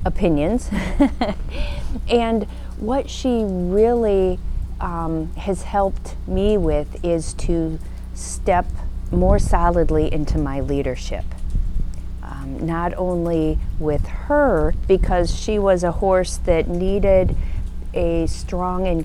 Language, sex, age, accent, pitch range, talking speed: English, female, 40-59, American, 135-195 Hz, 100 wpm